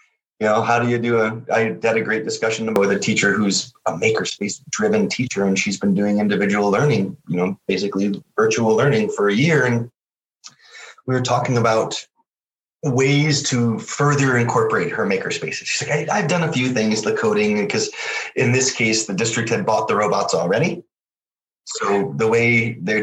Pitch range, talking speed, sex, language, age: 110-140 Hz, 180 wpm, male, English, 30-49